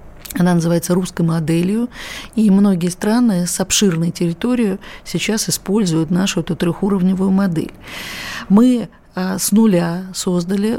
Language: Russian